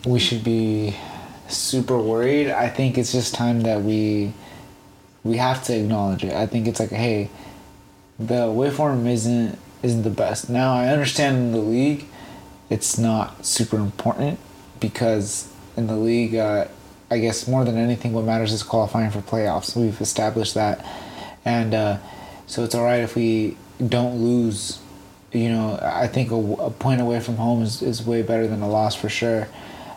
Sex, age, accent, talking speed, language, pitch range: male, 20-39, American, 170 wpm, English, 105-120 Hz